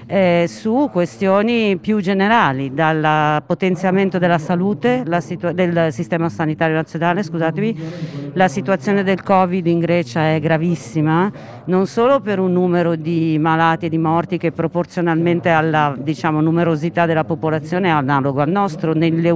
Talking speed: 135 wpm